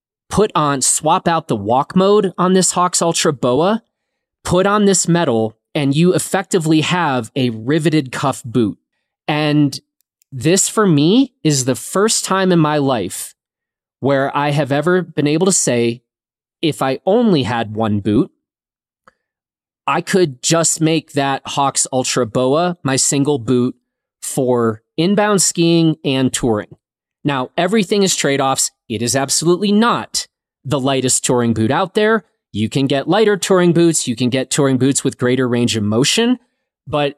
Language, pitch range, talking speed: English, 130-175 Hz, 155 wpm